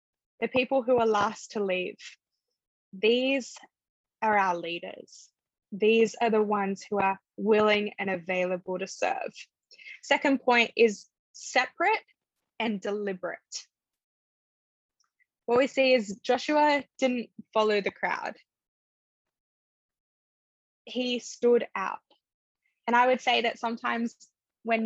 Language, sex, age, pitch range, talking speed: English, female, 10-29, 195-240 Hz, 115 wpm